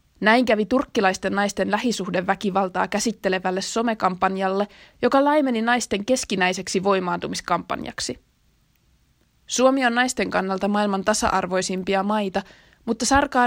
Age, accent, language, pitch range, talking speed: 20-39, native, Finnish, 185-220 Hz, 95 wpm